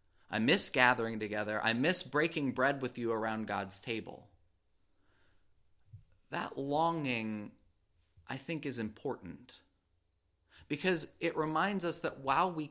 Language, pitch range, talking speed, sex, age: English, 115-160 Hz, 125 wpm, male, 30-49